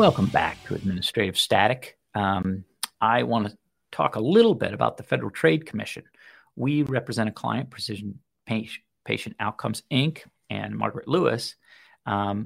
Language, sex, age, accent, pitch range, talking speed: English, male, 50-69, American, 110-140 Hz, 145 wpm